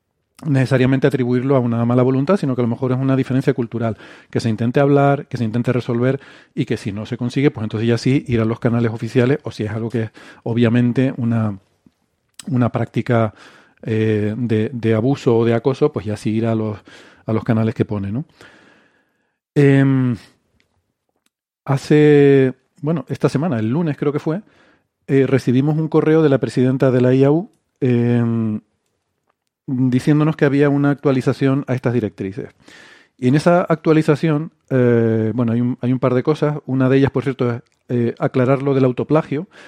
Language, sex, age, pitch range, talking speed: Spanish, male, 40-59, 115-140 Hz, 180 wpm